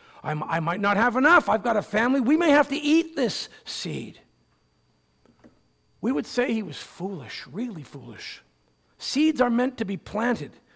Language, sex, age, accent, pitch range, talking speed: English, male, 50-69, American, 200-305 Hz, 165 wpm